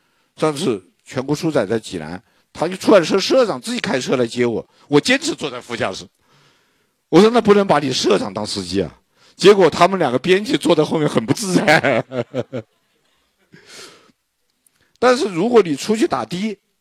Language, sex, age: Chinese, male, 50-69